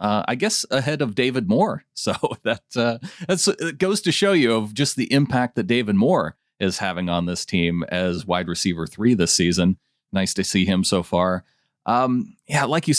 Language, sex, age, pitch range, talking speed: English, male, 30-49, 95-140 Hz, 205 wpm